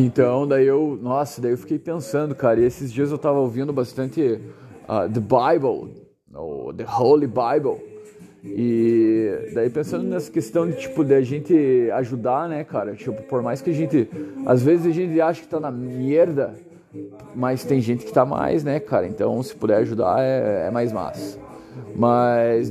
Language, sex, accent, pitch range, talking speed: Portuguese, male, Brazilian, 120-145 Hz, 175 wpm